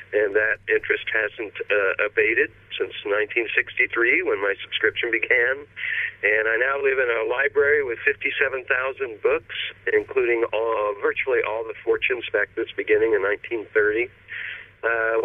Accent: American